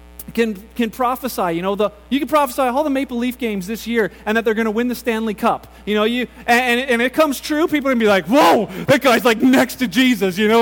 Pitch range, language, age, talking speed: 200-260 Hz, English, 30-49, 265 wpm